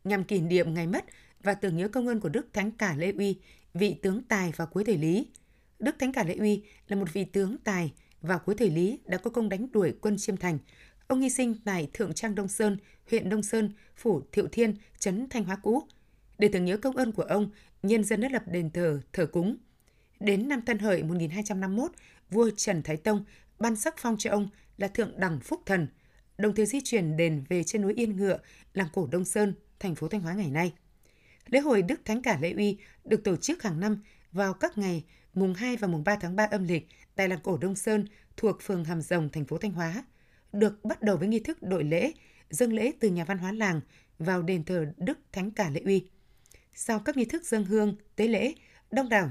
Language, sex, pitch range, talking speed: Vietnamese, female, 180-220 Hz, 230 wpm